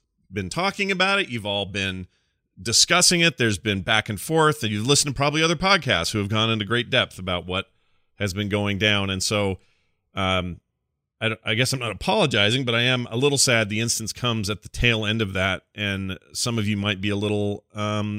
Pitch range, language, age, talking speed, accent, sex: 95-120 Hz, English, 30-49, 220 wpm, American, male